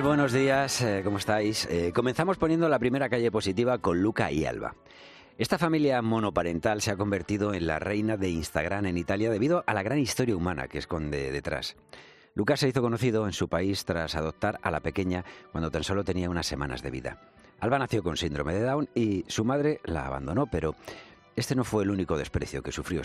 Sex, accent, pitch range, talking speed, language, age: male, Spanish, 85-115 Hz, 200 wpm, Spanish, 40-59